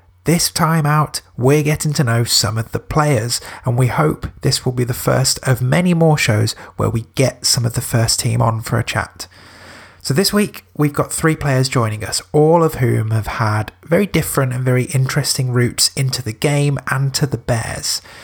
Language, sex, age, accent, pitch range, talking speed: English, male, 30-49, British, 115-145 Hz, 205 wpm